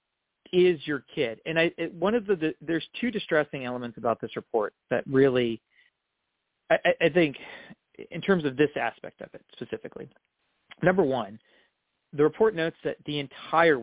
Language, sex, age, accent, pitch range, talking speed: English, male, 40-59, American, 120-150 Hz, 165 wpm